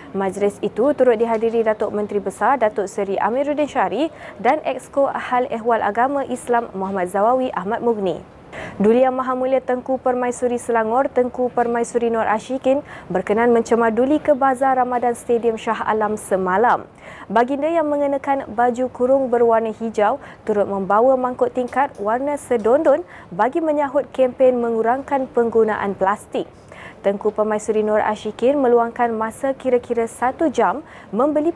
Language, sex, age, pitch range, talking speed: Malay, female, 20-39, 215-270 Hz, 135 wpm